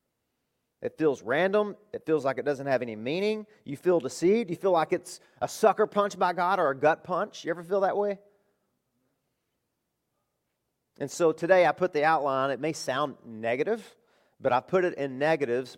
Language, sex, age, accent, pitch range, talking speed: English, male, 40-59, American, 120-160 Hz, 185 wpm